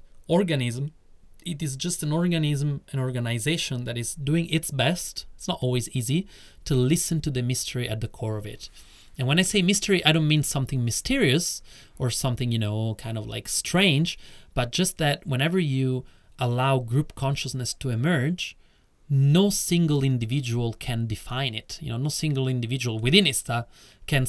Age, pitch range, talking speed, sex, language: 30-49, 125-160 Hz, 170 wpm, male, English